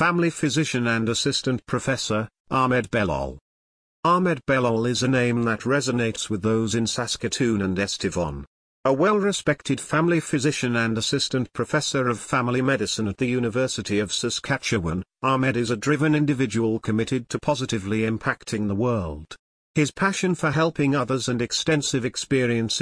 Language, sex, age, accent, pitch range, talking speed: English, male, 50-69, British, 110-140 Hz, 140 wpm